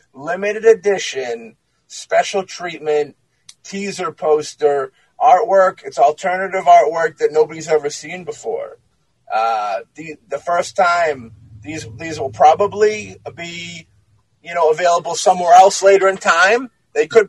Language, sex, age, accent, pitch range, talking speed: English, male, 30-49, American, 145-190 Hz, 120 wpm